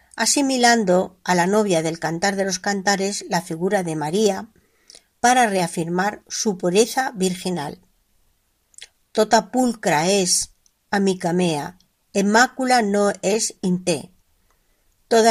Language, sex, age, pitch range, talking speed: Spanish, female, 50-69, 180-225 Hz, 110 wpm